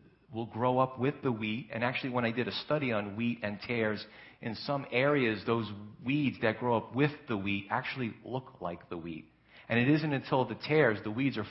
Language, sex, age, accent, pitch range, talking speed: English, male, 40-59, American, 110-130 Hz, 220 wpm